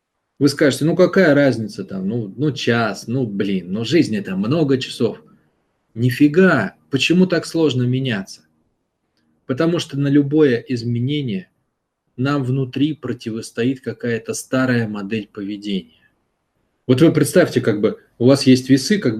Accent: native